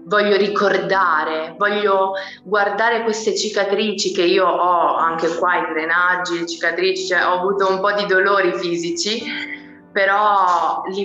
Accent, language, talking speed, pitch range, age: native, Italian, 130 wpm, 170-205 Hz, 20-39